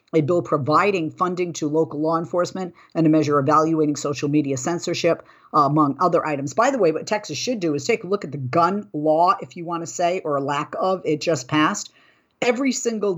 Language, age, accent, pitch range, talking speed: English, 50-69, American, 150-180 Hz, 220 wpm